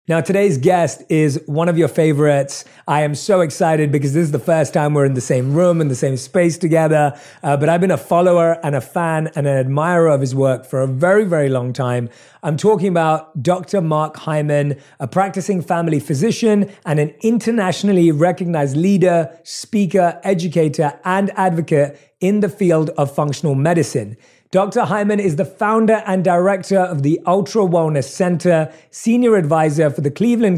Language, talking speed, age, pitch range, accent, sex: English, 180 wpm, 30-49, 150-190 Hz, British, male